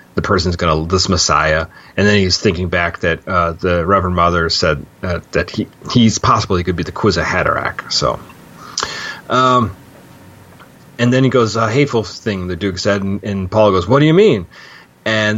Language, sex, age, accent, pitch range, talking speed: English, male, 30-49, American, 95-120 Hz, 185 wpm